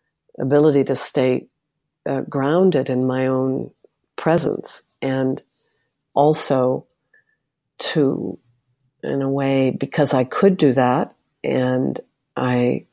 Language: English